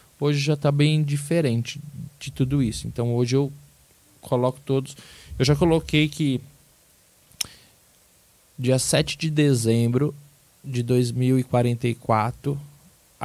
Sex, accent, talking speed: male, Brazilian, 105 wpm